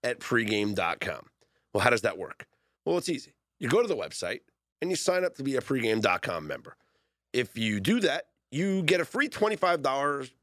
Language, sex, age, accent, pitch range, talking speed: English, male, 40-59, American, 125-205 Hz, 190 wpm